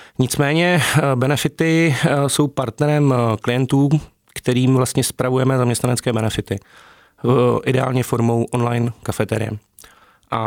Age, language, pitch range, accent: 30-49, Czech, 115-130 Hz, native